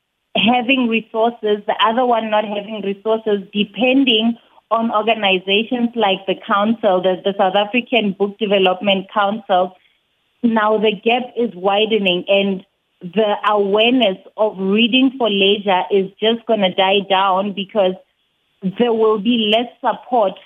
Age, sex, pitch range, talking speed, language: 30-49, female, 200-235 Hz, 130 wpm, English